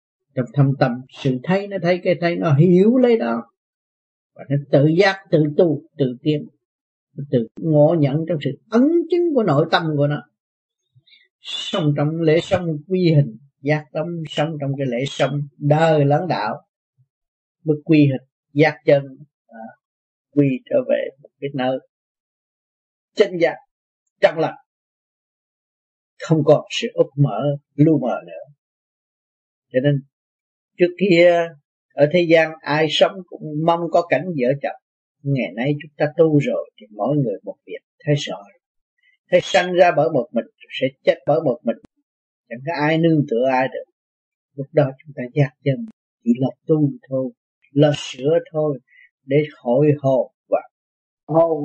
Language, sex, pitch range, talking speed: Vietnamese, male, 140-175 Hz, 160 wpm